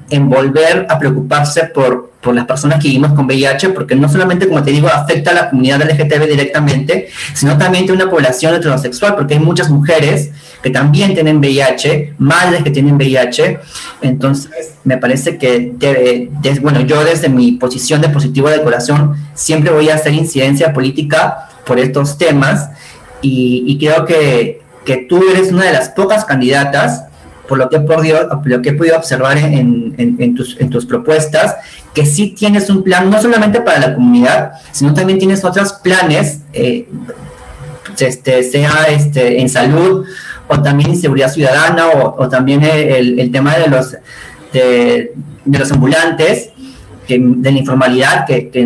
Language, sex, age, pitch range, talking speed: Spanish, male, 30-49, 130-160 Hz, 160 wpm